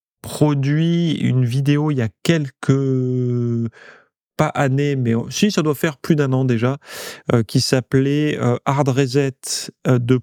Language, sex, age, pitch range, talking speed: French, male, 30-49, 120-145 Hz, 155 wpm